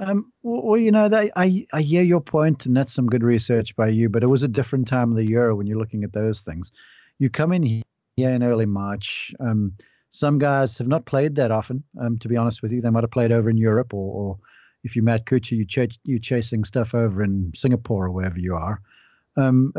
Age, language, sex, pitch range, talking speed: 40-59, English, male, 110-140 Hz, 235 wpm